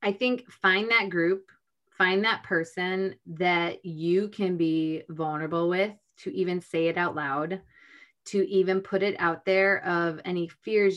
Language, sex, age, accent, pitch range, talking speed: English, female, 30-49, American, 165-185 Hz, 160 wpm